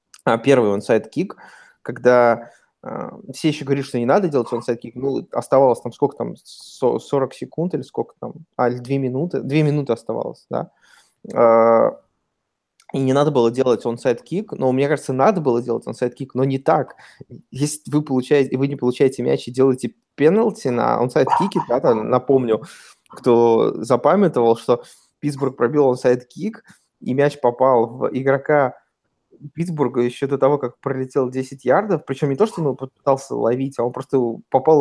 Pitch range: 125-145 Hz